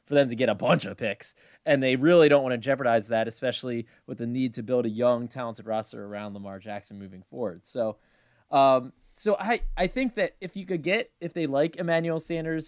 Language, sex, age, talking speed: English, male, 20-39, 220 wpm